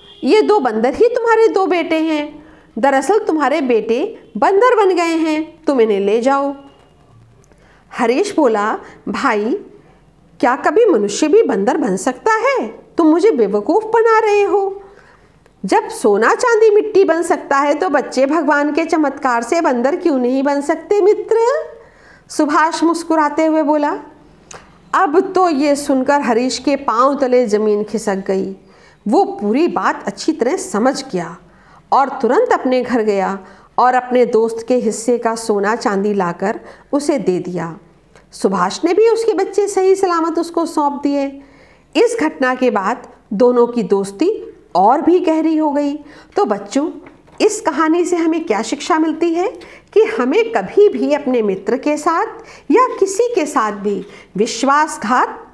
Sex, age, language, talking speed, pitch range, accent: female, 50-69, Hindi, 150 wpm, 240-380 Hz, native